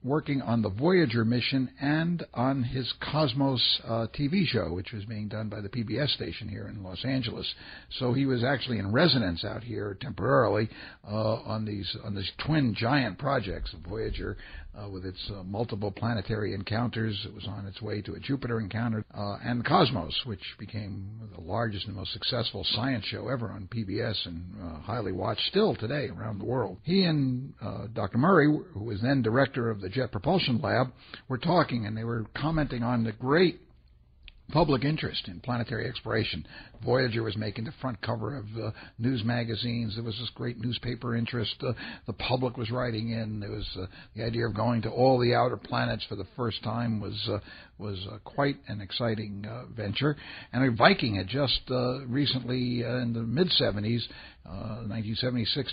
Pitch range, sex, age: 105-125 Hz, male, 60-79